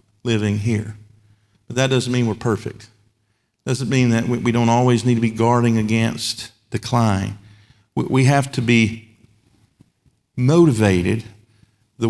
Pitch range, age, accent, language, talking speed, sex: 110-140 Hz, 50-69, American, English, 130 wpm, male